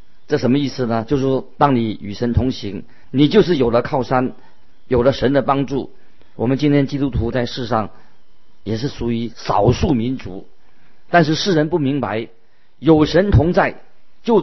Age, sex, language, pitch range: 50-69, male, Chinese, 115-150 Hz